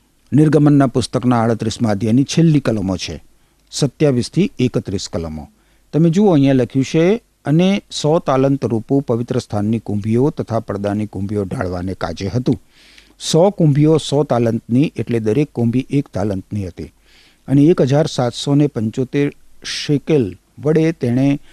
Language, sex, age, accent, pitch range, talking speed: Gujarati, male, 50-69, native, 110-155 Hz, 115 wpm